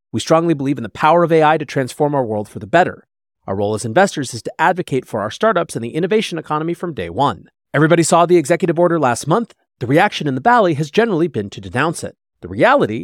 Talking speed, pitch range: 240 wpm, 125-175 Hz